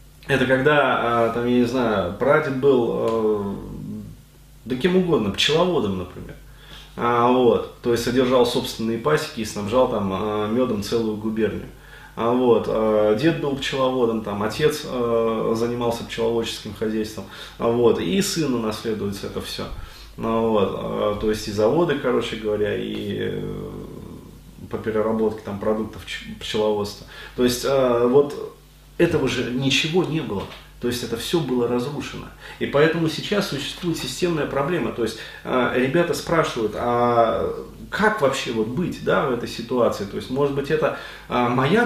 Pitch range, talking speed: 110-145 Hz, 130 wpm